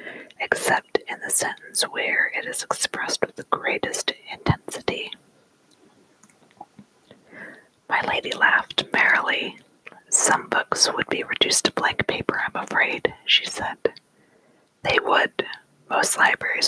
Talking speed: 115 wpm